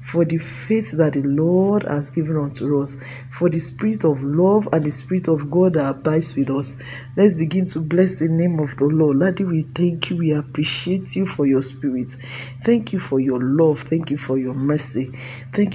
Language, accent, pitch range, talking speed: English, Nigerian, 135-175 Hz, 205 wpm